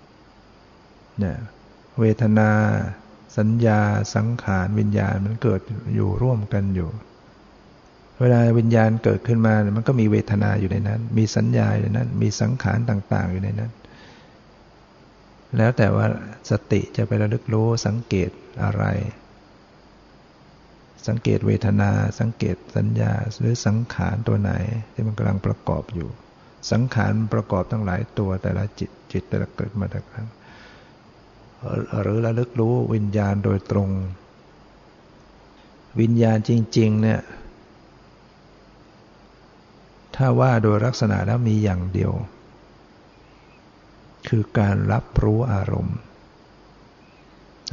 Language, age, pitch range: Thai, 60-79, 100-115 Hz